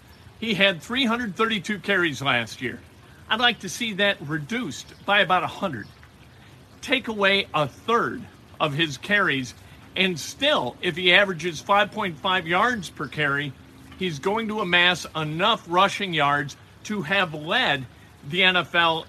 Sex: male